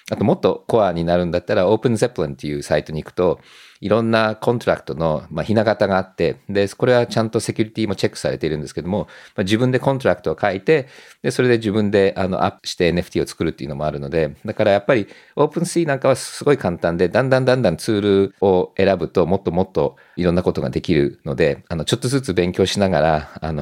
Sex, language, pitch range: male, Japanese, 85-120 Hz